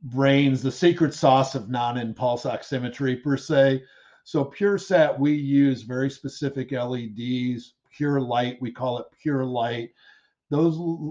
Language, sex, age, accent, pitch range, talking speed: English, male, 50-69, American, 115-140 Hz, 135 wpm